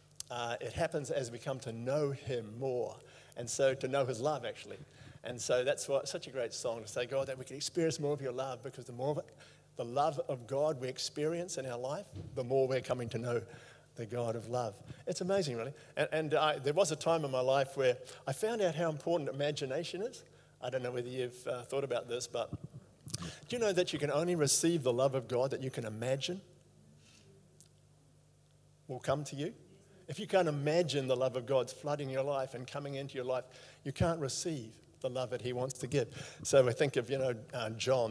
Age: 50-69